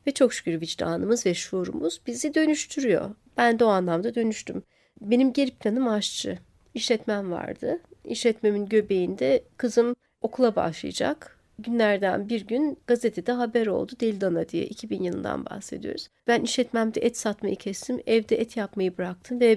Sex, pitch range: female, 205-255 Hz